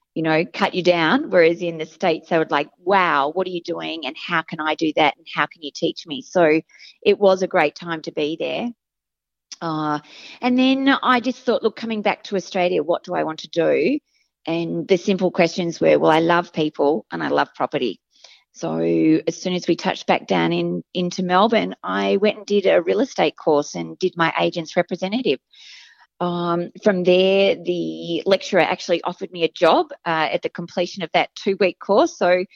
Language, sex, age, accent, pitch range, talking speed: English, female, 40-59, Australian, 160-200 Hz, 205 wpm